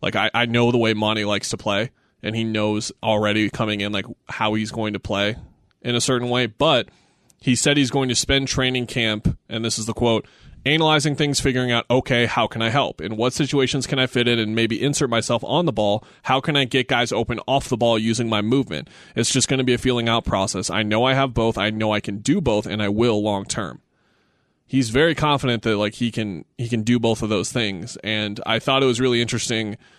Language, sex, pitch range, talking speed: English, male, 110-125 Hz, 240 wpm